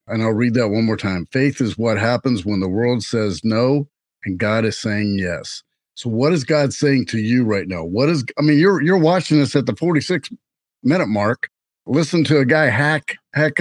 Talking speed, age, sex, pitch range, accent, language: 205 wpm, 50-69, male, 115-150 Hz, American, English